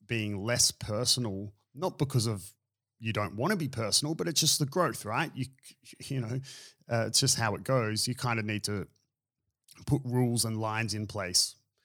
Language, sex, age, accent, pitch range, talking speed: English, male, 30-49, Australian, 110-135 Hz, 190 wpm